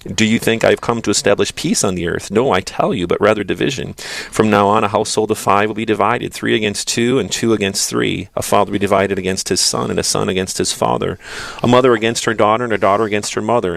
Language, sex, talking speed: English, male, 260 wpm